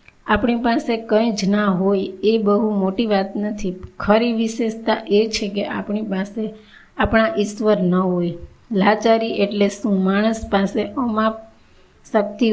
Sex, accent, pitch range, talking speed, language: female, native, 195-215 Hz, 105 wpm, Gujarati